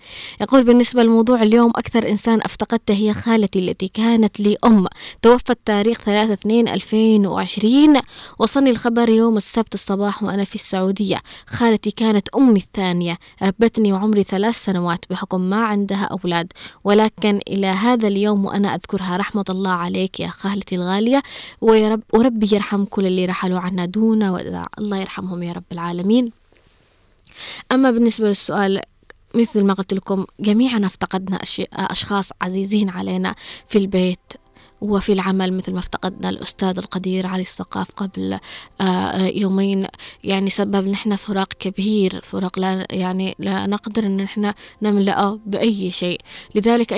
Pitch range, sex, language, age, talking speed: 190-215 Hz, female, Arabic, 20-39, 135 wpm